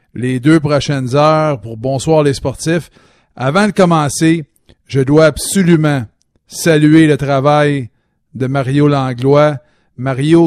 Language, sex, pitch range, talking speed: French, male, 135-155 Hz, 120 wpm